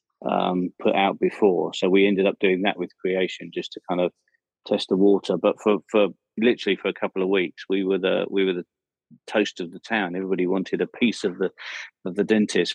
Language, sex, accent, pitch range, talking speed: English, male, British, 90-105 Hz, 220 wpm